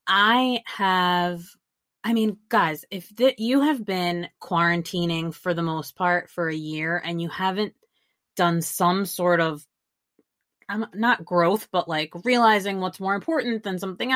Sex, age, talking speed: female, 30-49, 155 wpm